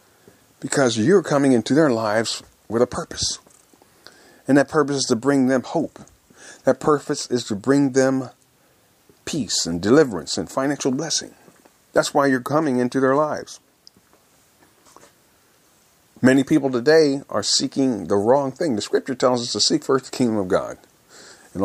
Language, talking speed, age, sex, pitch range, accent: English, 155 wpm, 50-69, male, 120-155 Hz, American